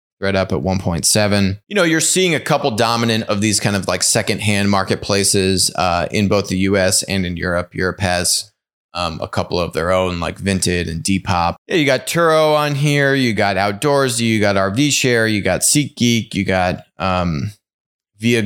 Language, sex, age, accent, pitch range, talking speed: English, male, 20-39, American, 95-120 Hz, 205 wpm